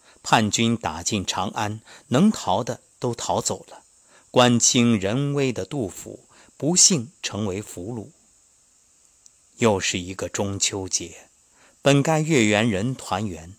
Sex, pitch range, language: male, 95-145 Hz, Chinese